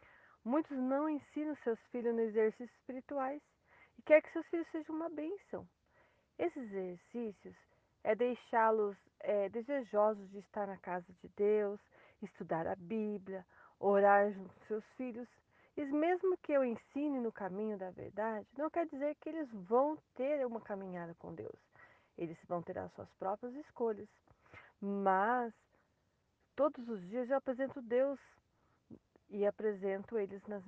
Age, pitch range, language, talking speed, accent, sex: 40-59, 200-275 Hz, Portuguese, 145 wpm, Brazilian, female